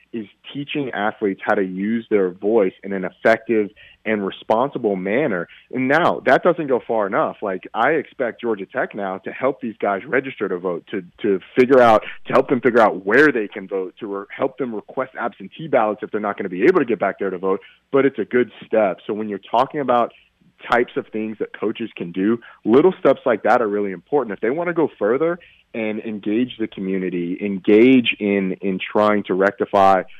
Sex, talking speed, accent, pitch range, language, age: male, 210 wpm, American, 95-115 Hz, English, 30-49